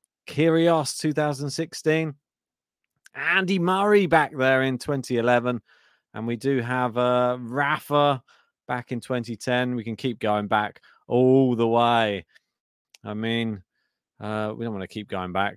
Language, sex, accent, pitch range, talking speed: English, male, British, 110-140 Hz, 140 wpm